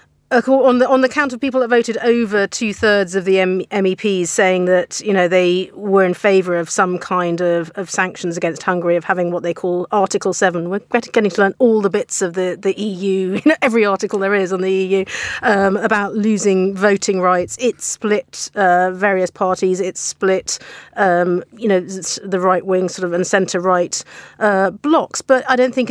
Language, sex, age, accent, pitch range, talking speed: English, female, 40-59, British, 185-215 Hz, 200 wpm